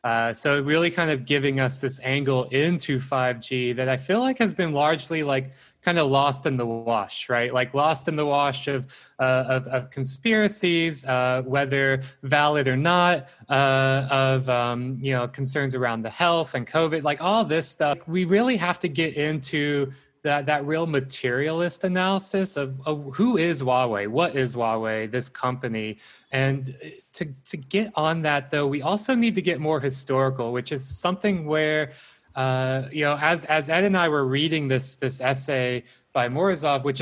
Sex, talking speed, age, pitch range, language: male, 180 wpm, 20-39, 130-155 Hz, English